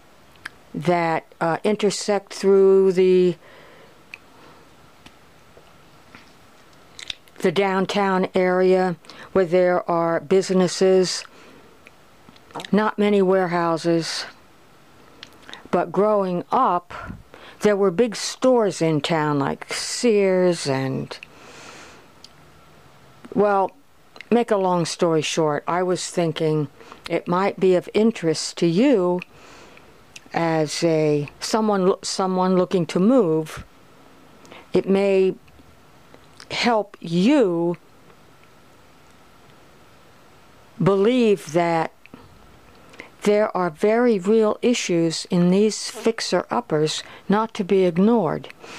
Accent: American